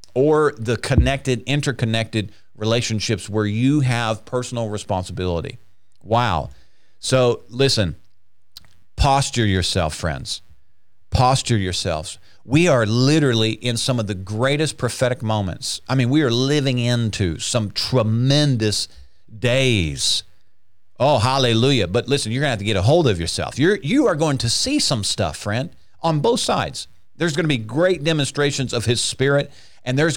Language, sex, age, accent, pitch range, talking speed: English, male, 50-69, American, 105-140 Hz, 145 wpm